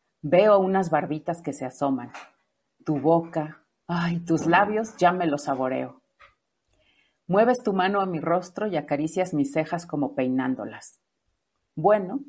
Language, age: Spanish, 40-59